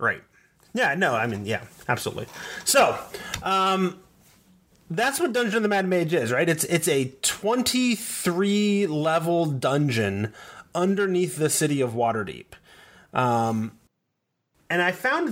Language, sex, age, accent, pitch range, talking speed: English, male, 30-49, American, 125-170 Hz, 125 wpm